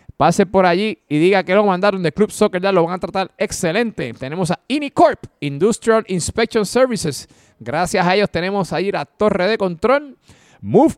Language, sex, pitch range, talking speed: Spanish, male, 170-215 Hz, 180 wpm